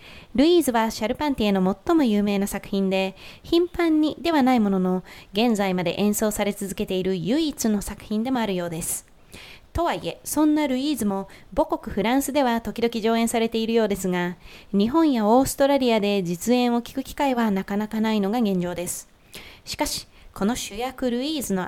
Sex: female